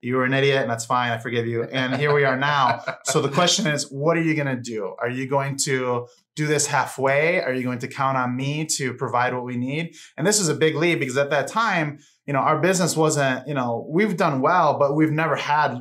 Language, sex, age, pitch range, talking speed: English, male, 20-39, 125-150 Hz, 255 wpm